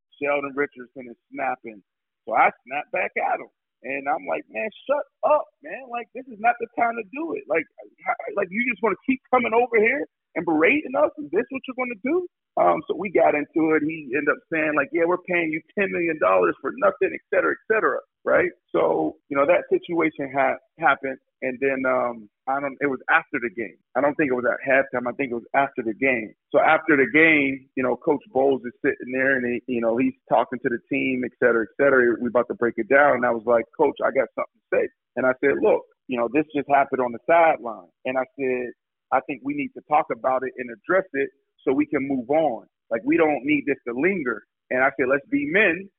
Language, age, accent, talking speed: English, 40-59, American, 245 wpm